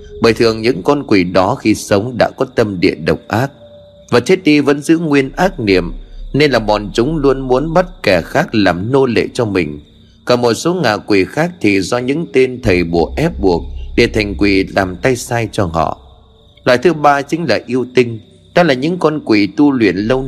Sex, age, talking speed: male, 30-49, 215 wpm